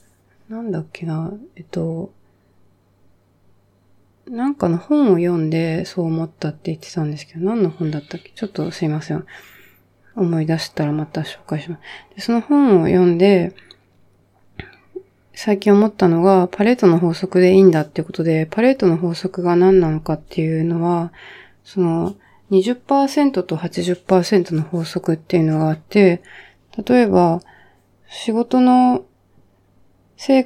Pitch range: 160-200 Hz